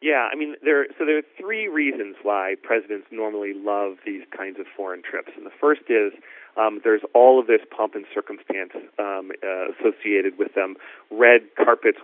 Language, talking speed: English, 185 wpm